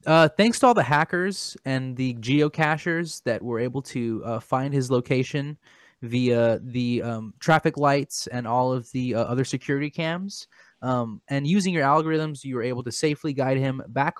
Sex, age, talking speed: male, 20-39, 180 wpm